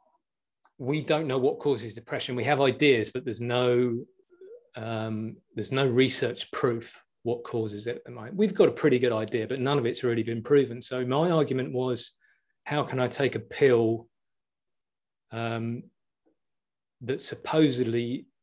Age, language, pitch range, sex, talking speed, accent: 30-49, English, 115-145 Hz, male, 150 wpm, British